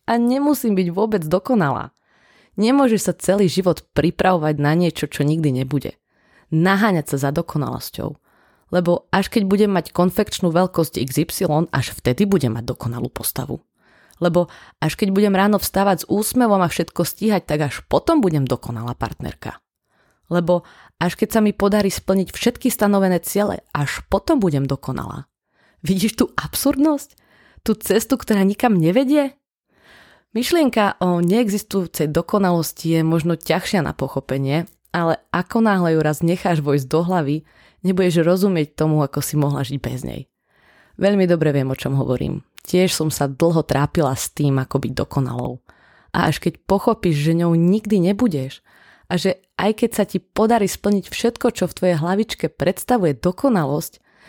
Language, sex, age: Slovak, female, 20-39